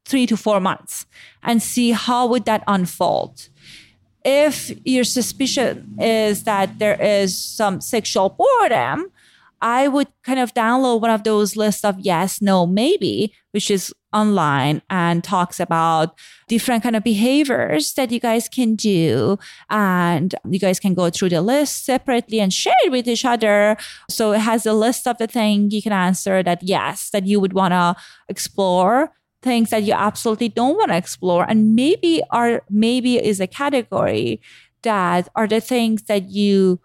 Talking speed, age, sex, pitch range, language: 170 wpm, 30-49, female, 185-235 Hz, English